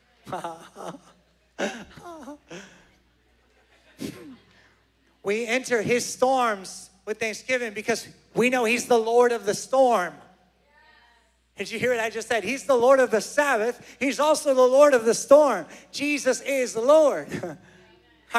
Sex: male